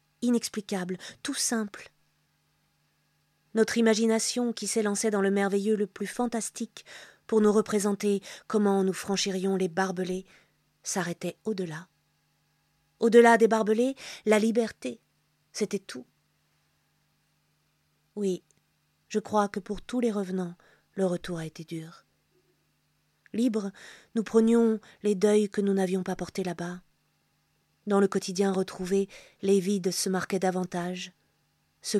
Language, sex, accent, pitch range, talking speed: French, female, French, 180-215 Hz, 120 wpm